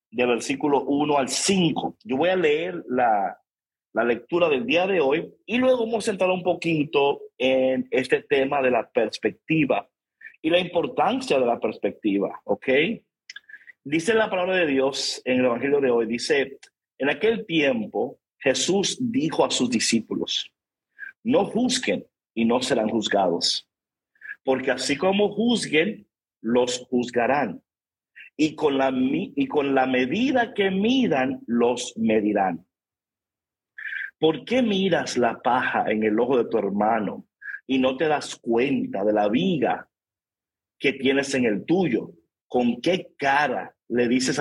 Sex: male